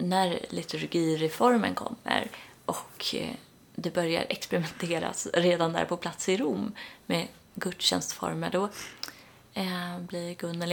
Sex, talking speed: female, 100 wpm